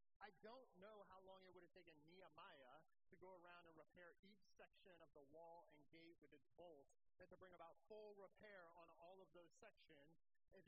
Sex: male